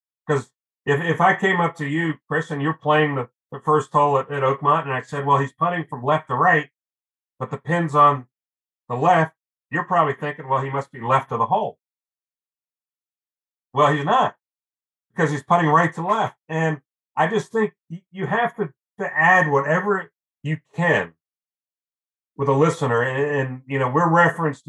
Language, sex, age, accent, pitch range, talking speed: English, male, 40-59, American, 120-150 Hz, 185 wpm